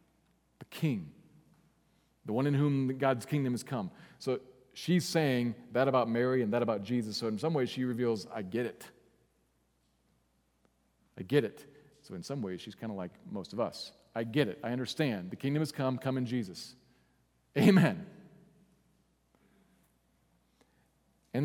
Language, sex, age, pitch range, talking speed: English, male, 40-59, 105-140 Hz, 155 wpm